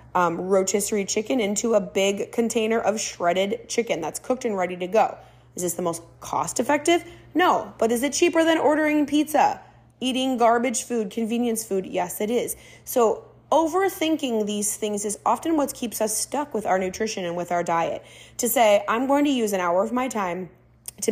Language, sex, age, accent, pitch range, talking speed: English, female, 20-39, American, 180-240 Hz, 190 wpm